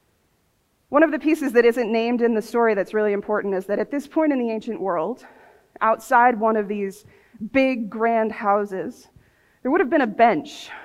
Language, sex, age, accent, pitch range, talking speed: English, female, 30-49, American, 215-270 Hz, 195 wpm